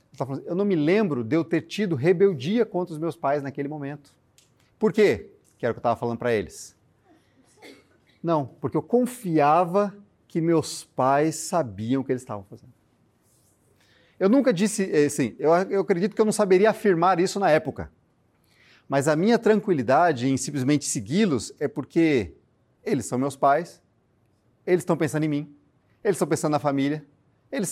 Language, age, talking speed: Portuguese, 40-59, 165 wpm